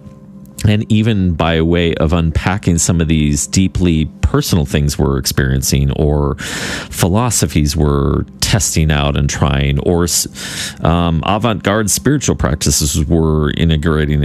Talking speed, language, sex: 120 wpm, English, male